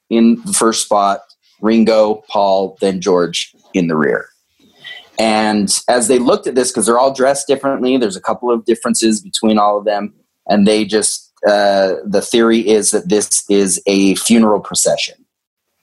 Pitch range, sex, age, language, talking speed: 100-130 Hz, male, 30-49, English, 165 wpm